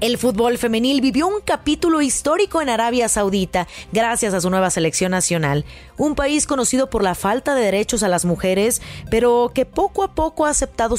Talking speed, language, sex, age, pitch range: 185 wpm, Spanish, female, 30-49, 190-270 Hz